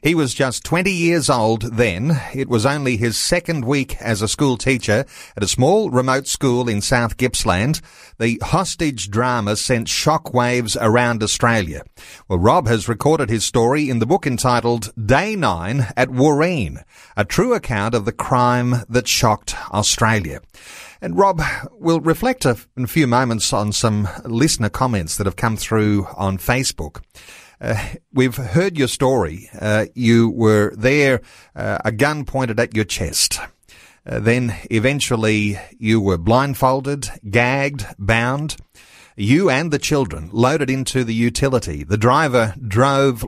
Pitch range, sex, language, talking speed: 110-135 Hz, male, English, 150 wpm